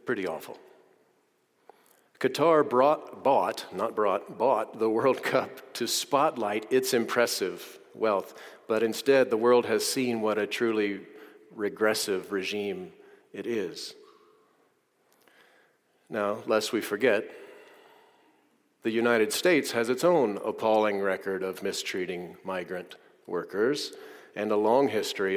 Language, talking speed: English, 115 wpm